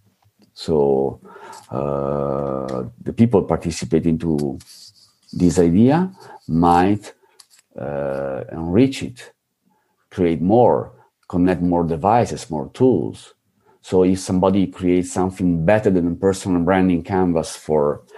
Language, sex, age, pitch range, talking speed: German, male, 50-69, 80-105 Hz, 100 wpm